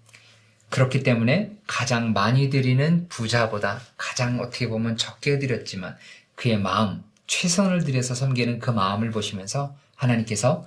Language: Korean